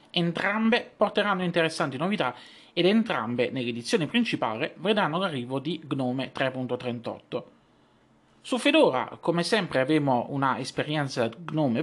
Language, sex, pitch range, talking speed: Italian, male, 125-175 Hz, 100 wpm